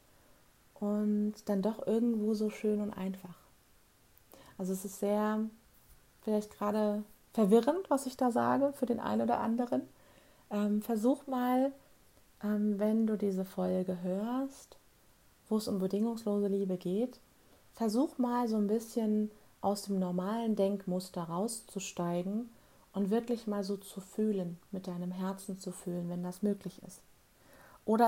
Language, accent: German, German